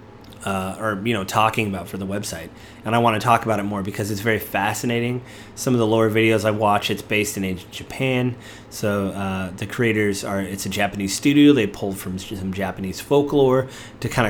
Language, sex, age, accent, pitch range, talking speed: English, male, 30-49, American, 100-120 Hz, 205 wpm